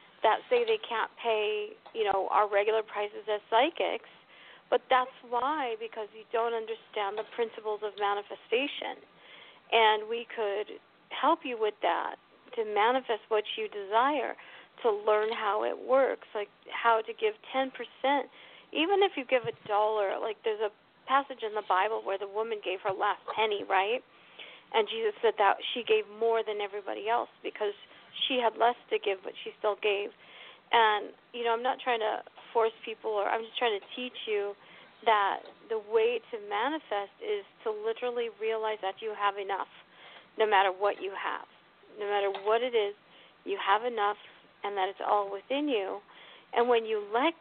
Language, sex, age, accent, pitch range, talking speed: English, female, 50-69, American, 210-280 Hz, 175 wpm